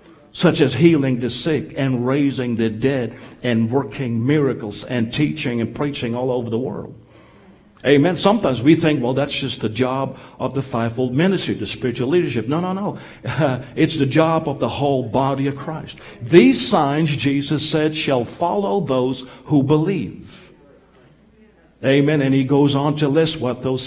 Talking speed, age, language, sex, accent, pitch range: 165 wpm, 50-69, English, male, American, 125-160 Hz